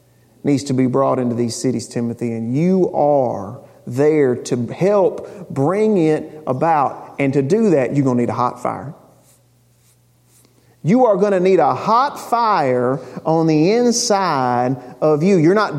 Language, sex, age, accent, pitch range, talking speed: English, male, 40-59, American, 125-175 Hz, 165 wpm